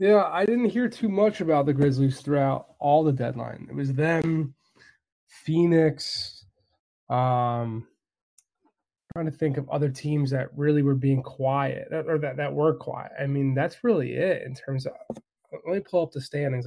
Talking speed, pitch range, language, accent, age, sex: 175 wpm, 130-150 Hz, English, American, 20-39, male